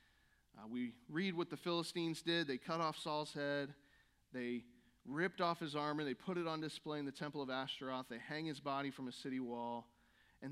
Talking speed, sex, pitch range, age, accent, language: 205 wpm, male, 155-220 Hz, 40-59, American, English